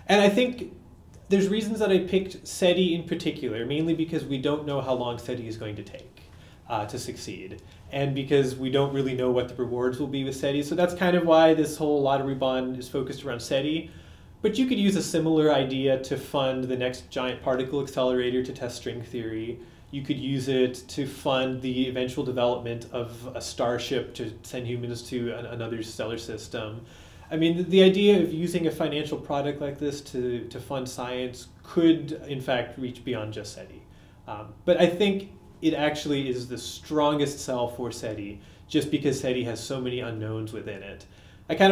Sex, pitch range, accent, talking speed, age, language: male, 120-150 Hz, American, 195 wpm, 30-49, English